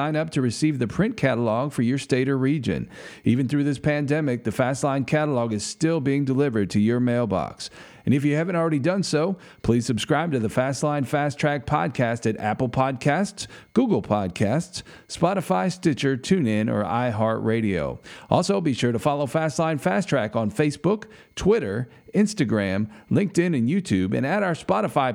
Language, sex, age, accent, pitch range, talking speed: English, male, 40-59, American, 115-155 Hz, 165 wpm